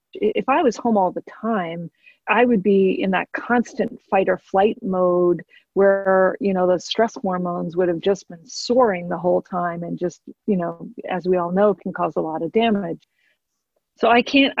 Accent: American